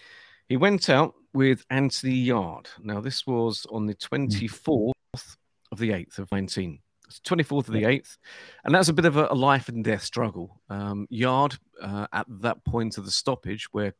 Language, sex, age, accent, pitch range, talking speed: English, male, 40-59, British, 105-135 Hz, 175 wpm